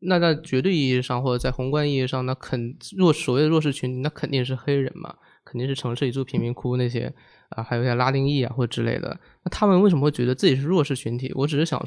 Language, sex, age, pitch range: Chinese, male, 20-39, 125-155 Hz